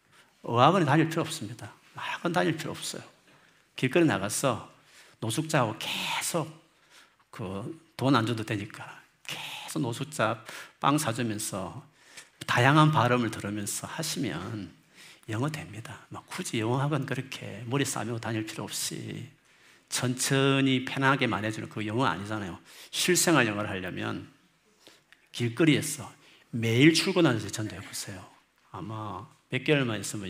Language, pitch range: Korean, 110-150 Hz